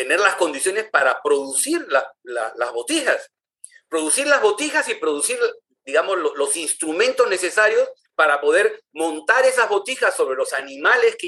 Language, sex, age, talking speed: Spanish, male, 50-69, 150 wpm